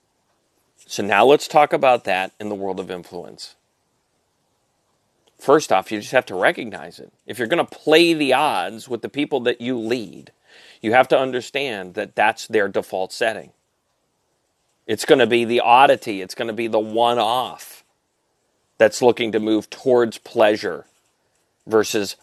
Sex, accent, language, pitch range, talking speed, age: male, American, English, 105-125 Hz, 160 wpm, 40-59